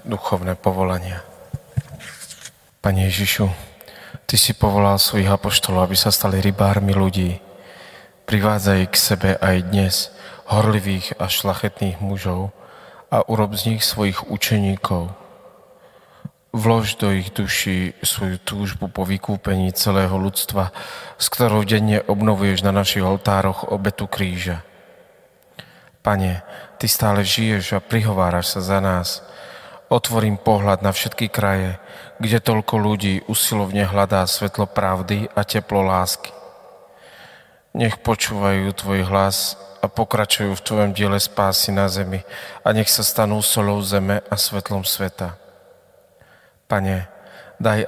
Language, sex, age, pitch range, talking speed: Slovak, male, 30-49, 95-105 Hz, 120 wpm